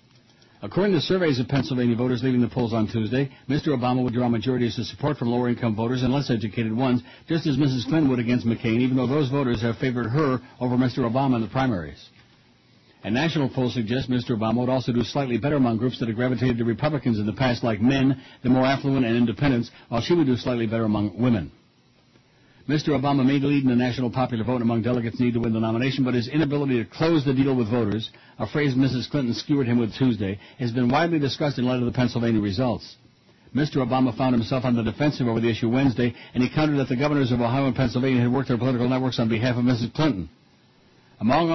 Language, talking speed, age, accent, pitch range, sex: English, 225 wpm, 60-79, American, 120-135 Hz, male